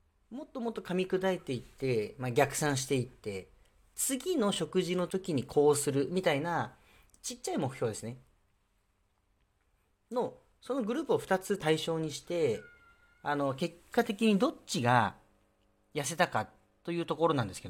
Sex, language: male, Japanese